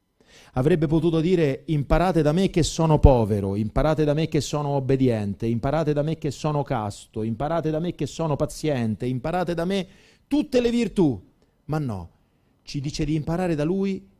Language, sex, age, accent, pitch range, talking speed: Italian, male, 40-59, native, 105-145 Hz, 175 wpm